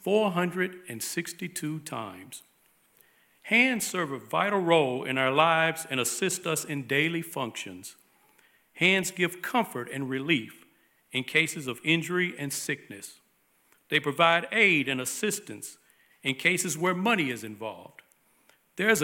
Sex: male